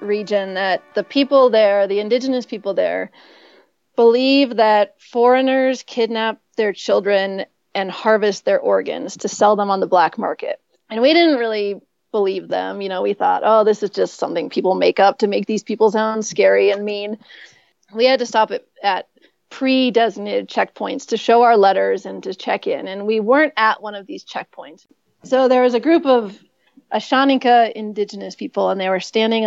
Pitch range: 200-250 Hz